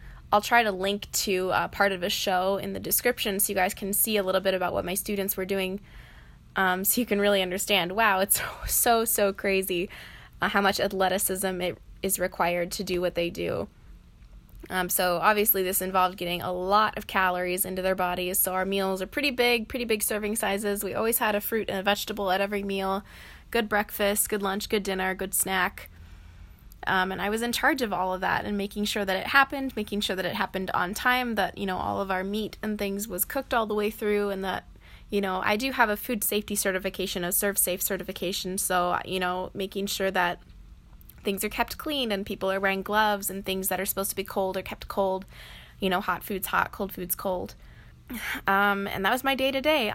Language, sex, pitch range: English, female, 185-210 Hz